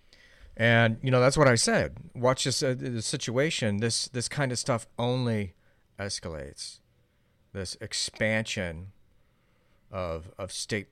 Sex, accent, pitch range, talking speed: male, American, 90-115 Hz, 130 wpm